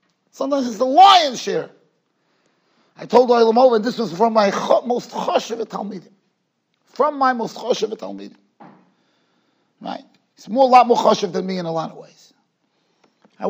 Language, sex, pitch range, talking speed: English, male, 180-240 Hz, 170 wpm